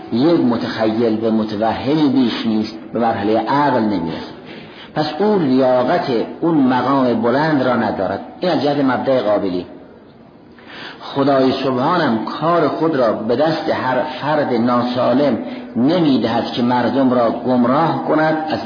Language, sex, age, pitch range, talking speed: Persian, male, 50-69, 110-155 Hz, 120 wpm